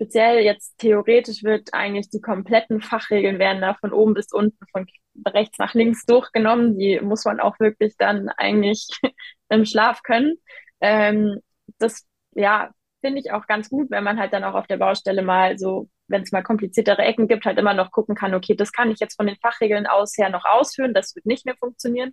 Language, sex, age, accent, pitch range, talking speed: German, female, 20-39, German, 200-230 Hz, 200 wpm